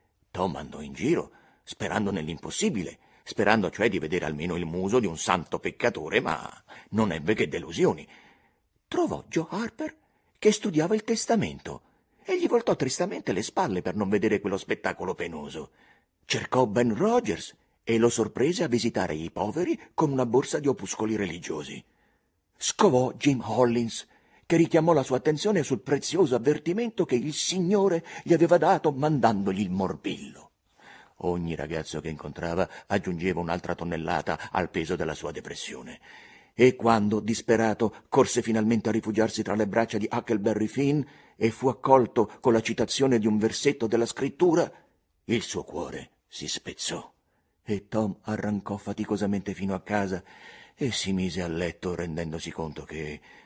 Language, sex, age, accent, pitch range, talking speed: Italian, male, 50-69, native, 95-140 Hz, 150 wpm